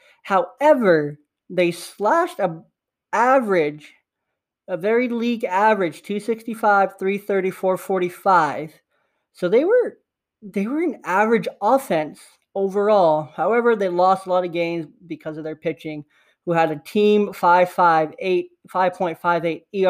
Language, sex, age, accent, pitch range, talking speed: English, male, 20-39, American, 160-190 Hz, 110 wpm